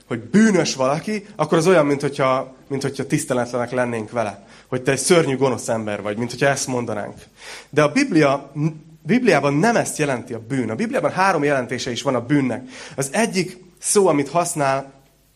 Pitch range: 130-165 Hz